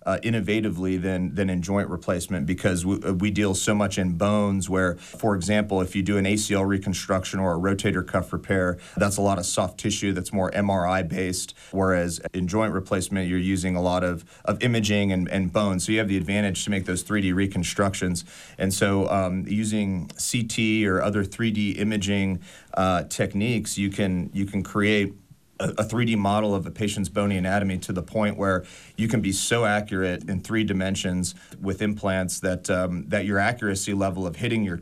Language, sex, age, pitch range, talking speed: English, male, 40-59, 95-105 Hz, 190 wpm